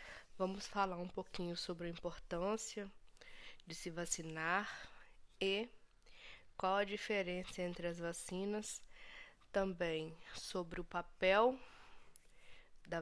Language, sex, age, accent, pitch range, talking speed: Portuguese, female, 20-39, Brazilian, 175-210 Hz, 100 wpm